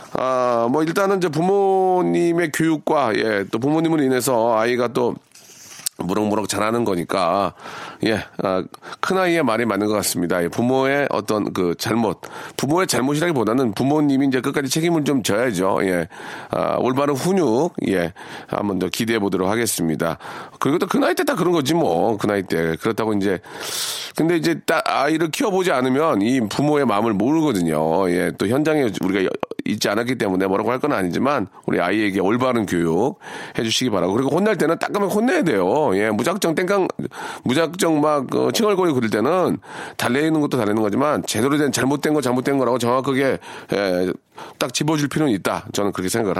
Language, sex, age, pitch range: Korean, male, 40-59, 105-160 Hz